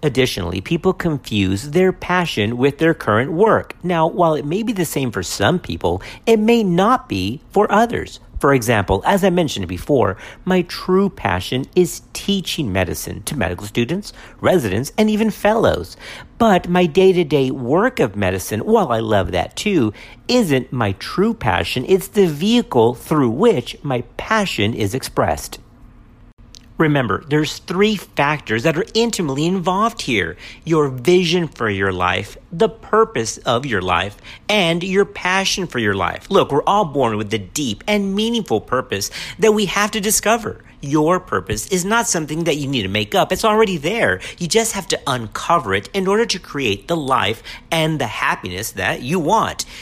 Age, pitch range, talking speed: 50-69, 115-190 Hz, 170 wpm